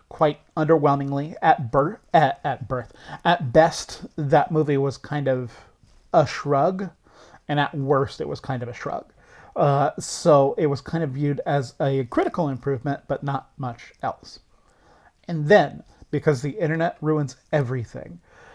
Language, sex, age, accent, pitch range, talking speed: English, male, 30-49, American, 140-170 Hz, 150 wpm